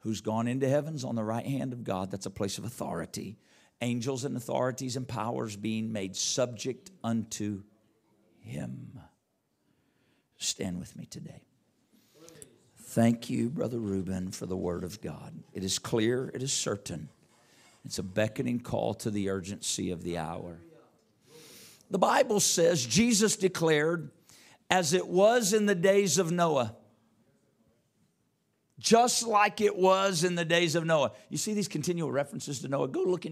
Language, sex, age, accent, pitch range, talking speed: English, male, 50-69, American, 110-160 Hz, 155 wpm